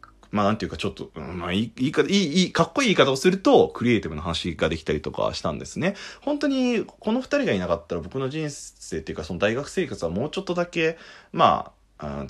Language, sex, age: Japanese, male, 30-49